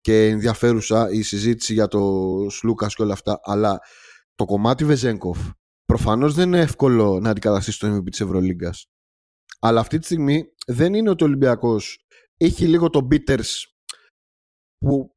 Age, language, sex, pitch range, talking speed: 30-49, Greek, male, 105-140 Hz, 150 wpm